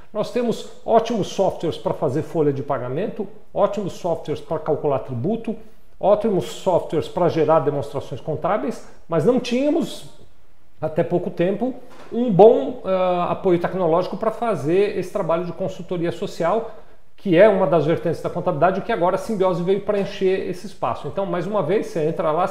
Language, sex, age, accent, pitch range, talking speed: Portuguese, male, 50-69, Brazilian, 150-195 Hz, 165 wpm